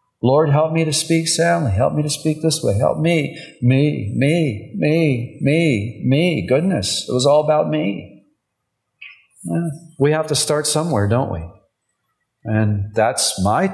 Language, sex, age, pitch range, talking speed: English, male, 50-69, 110-170 Hz, 155 wpm